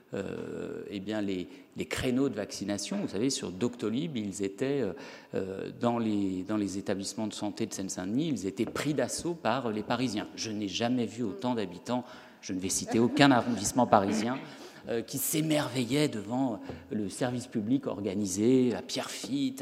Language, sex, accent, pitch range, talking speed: French, male, French, 100-125 Hz, 160 wpm